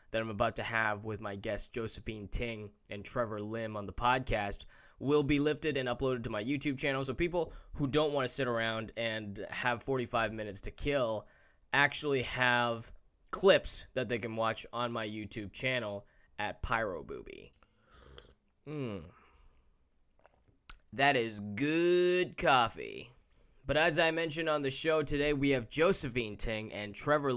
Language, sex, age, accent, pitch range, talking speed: English, male, 10-29, American, 110-140 Hz, 155 wpm